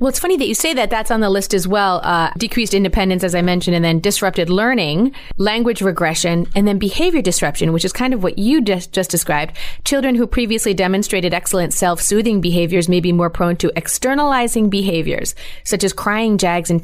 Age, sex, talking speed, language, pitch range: 30-49, female, 205 wpm, English, 170-215 Hz